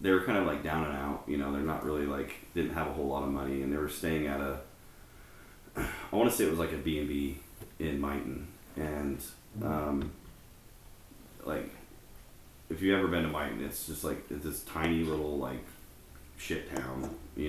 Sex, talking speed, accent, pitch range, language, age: male, 205 wpm, American, 70-80 Hz, English, 30-49